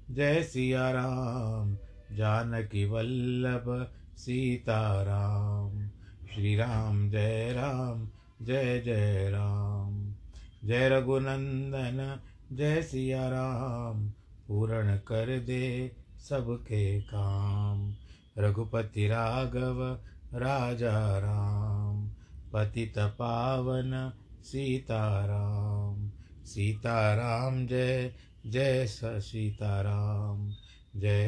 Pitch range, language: 100-120 Hz, Hindi